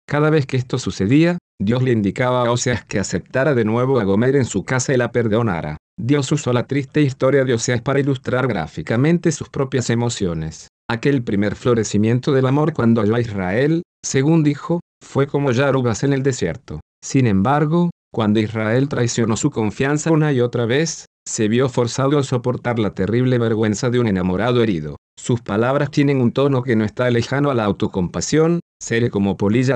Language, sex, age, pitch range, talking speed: Spanish, male, 50-69, 110-140 Hz, 180 wpm